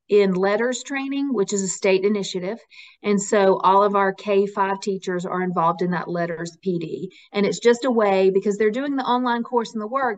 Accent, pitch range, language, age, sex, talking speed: American, 190-215 Hz, English, 40-59, female, 205 wpm